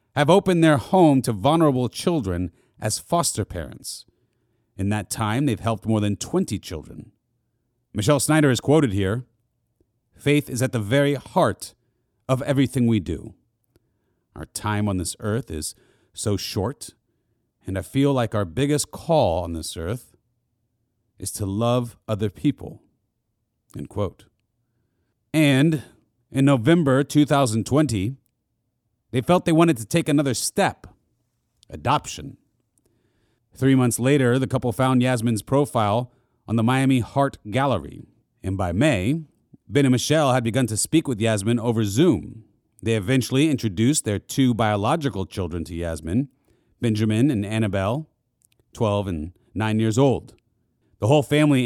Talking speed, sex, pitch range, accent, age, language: 140 wpm, male, 105-135 Hz, American, 40-59, English